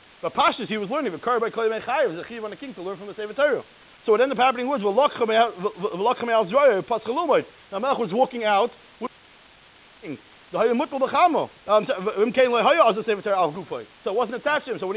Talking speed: 95 wpm